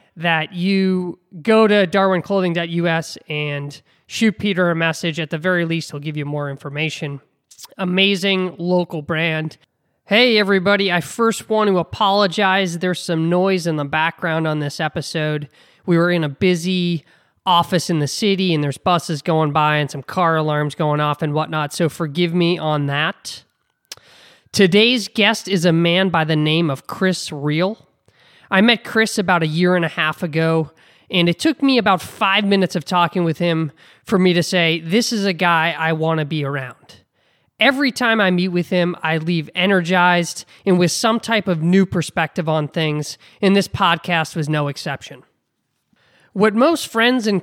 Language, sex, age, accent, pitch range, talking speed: English, male, 20-39, American, 160-195 Hz, 175 wpm